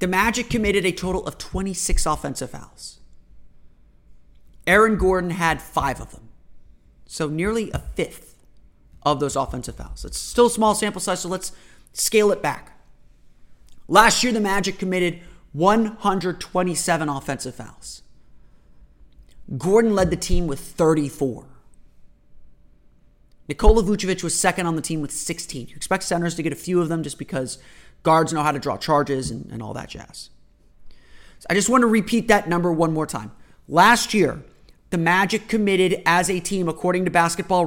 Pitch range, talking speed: 145-190 Hz, 160 wpm